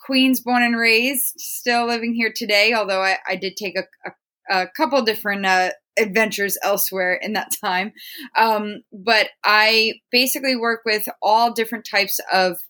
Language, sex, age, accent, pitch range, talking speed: English, female, 20-39, American, 185-225 Hz, 155 wpm